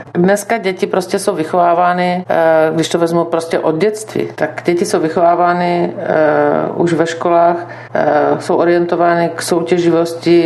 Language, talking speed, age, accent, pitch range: Czech, 140 wpm, 50-69, native, 160-180 Hz